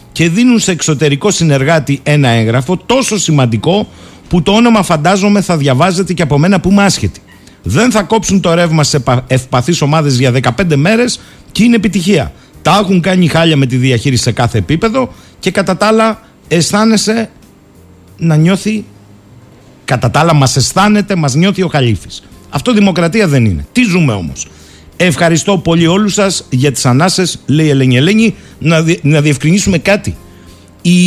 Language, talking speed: Greek, 155 wpm